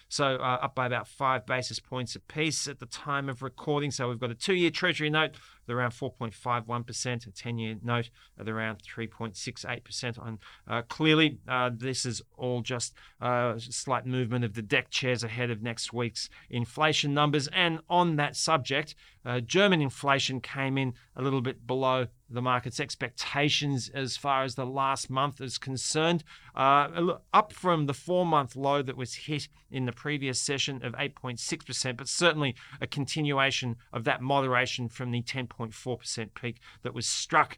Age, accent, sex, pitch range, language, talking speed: 30-49, Australian, male, 120-145 Hz, English, 170 wpm